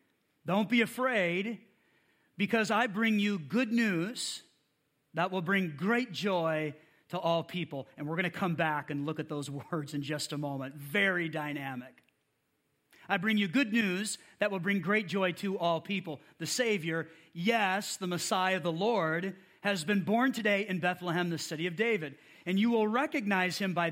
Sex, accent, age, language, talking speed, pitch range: male, American, 40-59, English, 175 wpm, 165-210 Hz